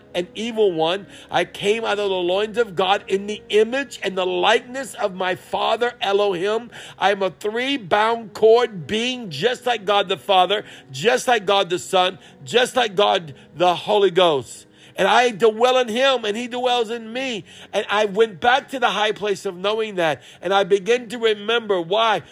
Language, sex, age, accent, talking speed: English, male, 50-69, American, 190 wpm